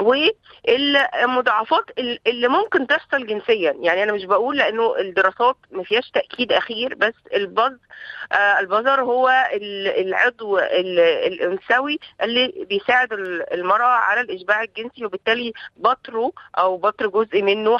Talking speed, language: 110 wpm, Arabic